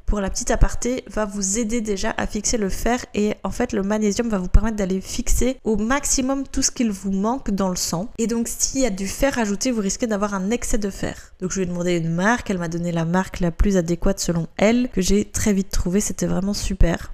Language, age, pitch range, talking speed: French, 20-39, 185-230 Hz, 250 wpm